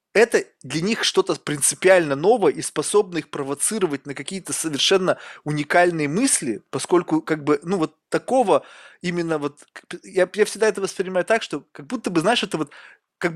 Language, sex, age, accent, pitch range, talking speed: Russian, male, 20-39, native, 160-220 Hz, 165 wpm